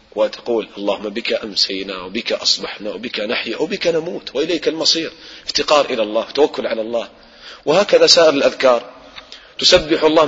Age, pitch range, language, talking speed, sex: 30-49, 115-170 Hz, English, 135 wpm, male